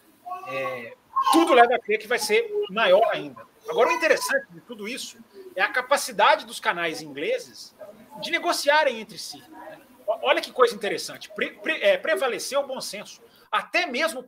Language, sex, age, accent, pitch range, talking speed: Portuguese, male, 40-59, Brazilian, 195-290 Hz, 145 wpm